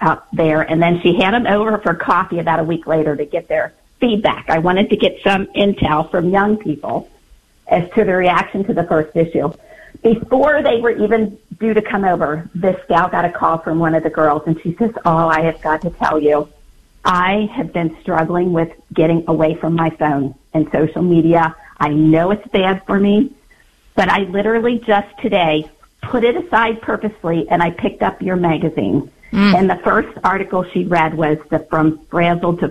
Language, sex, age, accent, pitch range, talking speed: English, female, 50-69, American, 165-215 Hz, 200 wpm